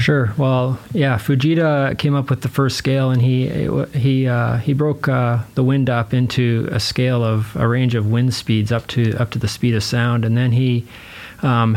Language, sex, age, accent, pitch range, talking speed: English, male, 30-49, American, 115-130 Hz, 210 wpm